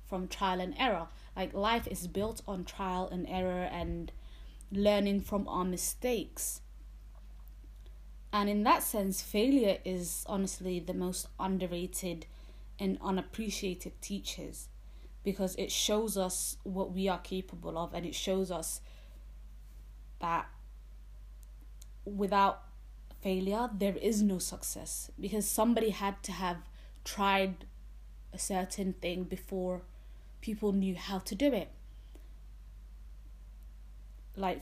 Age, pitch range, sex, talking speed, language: 20-39, 175-205 Hz, female, 115 wpm, English